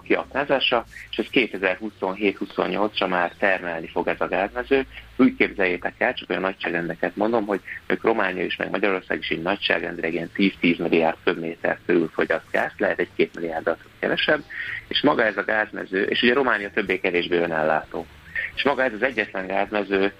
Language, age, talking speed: Hungarian, 30-49, 150 wpm